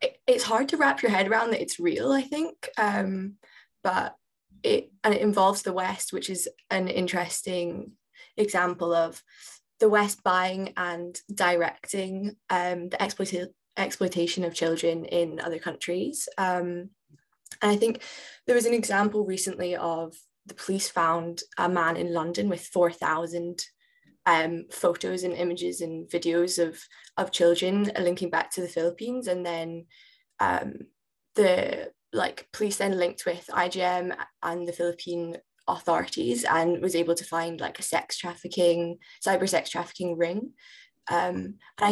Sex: female